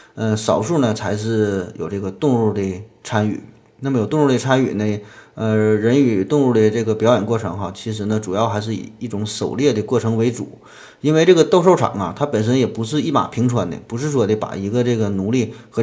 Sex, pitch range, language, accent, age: male, 110-130 Hz, Chinese, native, 20-39